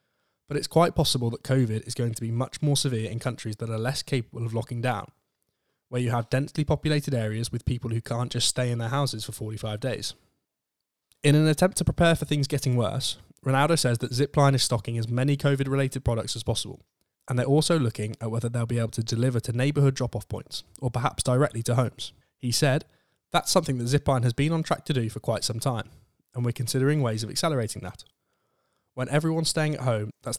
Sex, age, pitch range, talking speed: male, 10-29, 115-140 Hz, 215 wpm